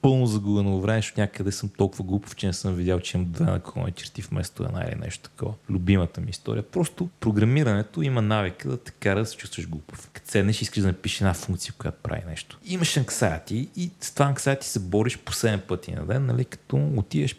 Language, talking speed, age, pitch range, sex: Bulgarian, 215 wpm, 30-49, 85-115 Hz, male